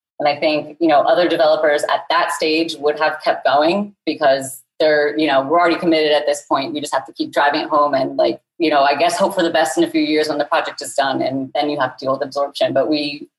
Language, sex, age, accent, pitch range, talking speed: English, female, 30-49, American, 150-175 Hz, 275 wpm